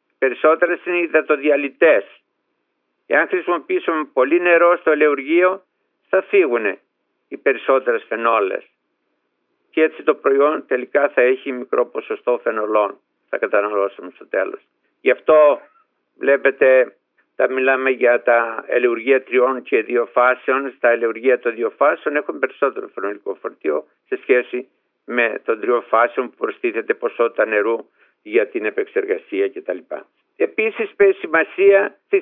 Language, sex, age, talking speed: Greek, male, 50-69, 130 wpm